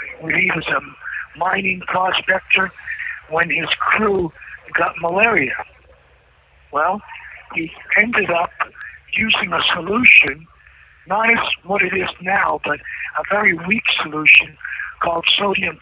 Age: 50-69